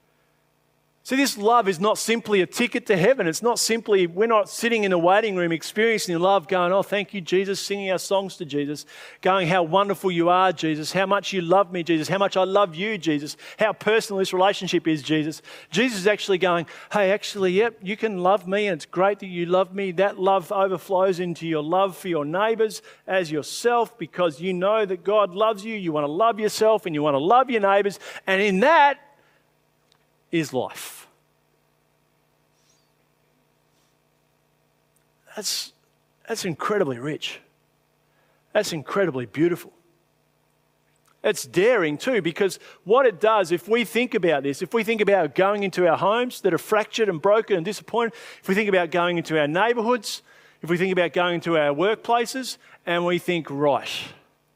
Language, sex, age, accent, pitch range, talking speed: English, male, 40-59, Australian, 175-215 Hz, 180 wpm